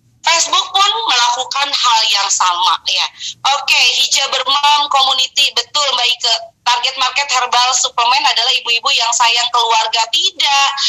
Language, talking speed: Indonesian, 140 wpm